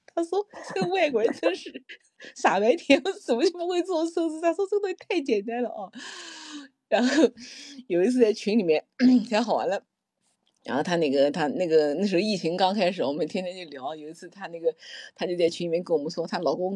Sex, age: female, 30-49